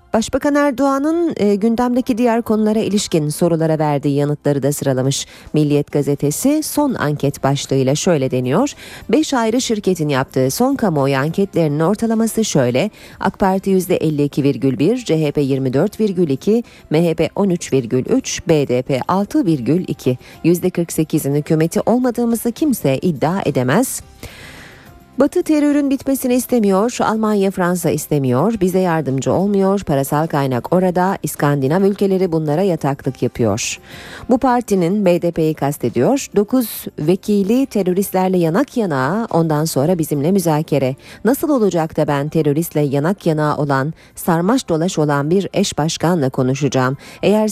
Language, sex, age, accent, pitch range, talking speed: Turkish, female, 40-59, native, 145-210 Hz, 110 wpm